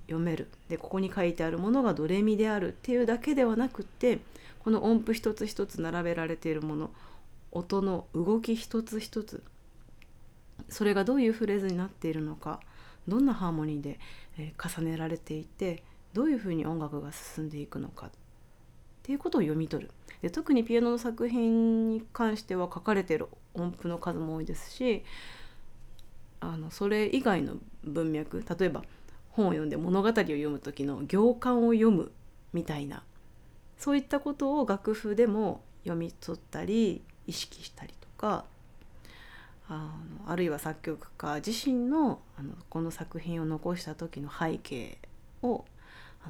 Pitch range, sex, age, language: 160-225 Hz, female, 30-49, Japanese